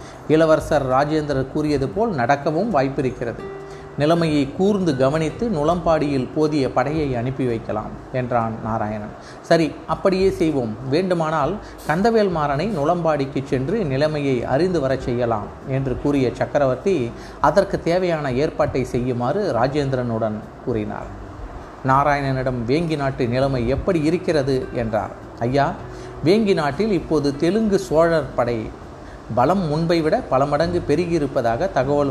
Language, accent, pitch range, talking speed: Tamil, native, 125-165 Hz, 100 wpm